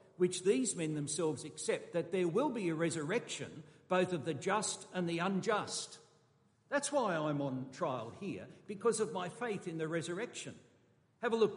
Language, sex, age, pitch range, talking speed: English, male, 60-79, 150-200 Hz, 175 wpm